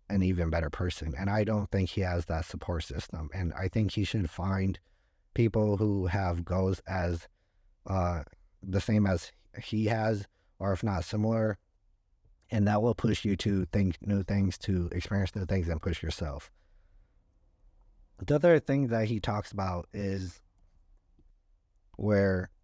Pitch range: 90-100 Hz